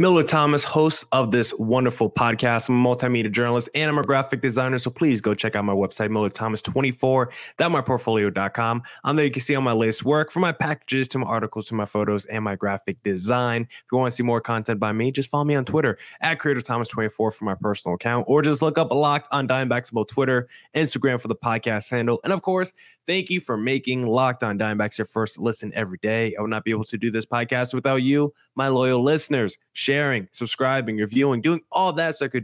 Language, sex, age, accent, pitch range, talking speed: English, male, 20-39, American, 115-145 Hz, 220 wpm